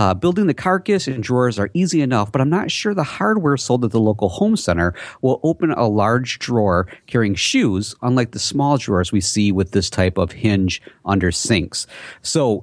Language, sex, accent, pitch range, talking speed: English, male, American, 100-135 Hz, 200 wpm